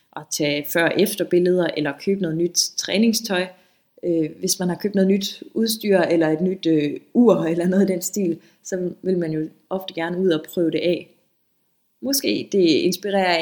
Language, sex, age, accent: Danish, female, 20-39, native